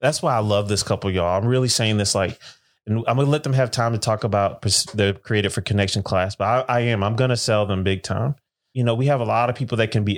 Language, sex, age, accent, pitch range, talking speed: English, male, 30-49, American, 95-115 Hz, 295 wpm